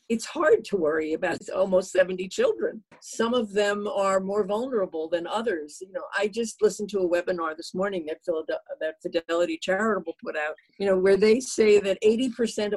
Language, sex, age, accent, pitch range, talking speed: English, female, 50-69, American, 175-220 Hz, 180 wpm